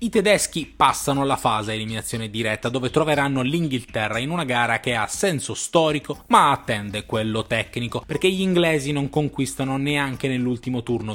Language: Italian